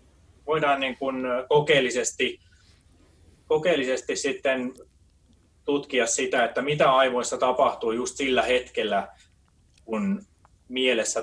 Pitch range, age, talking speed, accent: 95-150 Hz, 20-39, 90 wpm, native